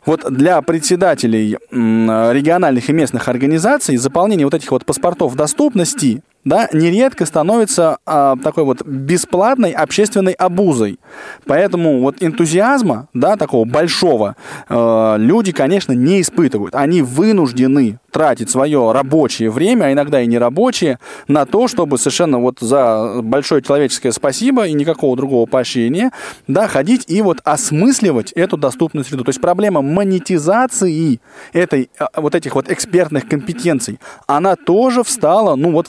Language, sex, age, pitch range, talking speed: Russian, male, 20-39, 130-180 Hz, 130 wpm